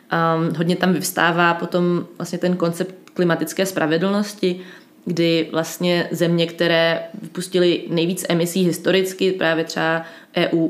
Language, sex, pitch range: Czech, female, 160-180 Hz